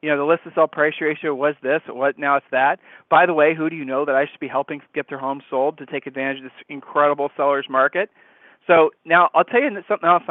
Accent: American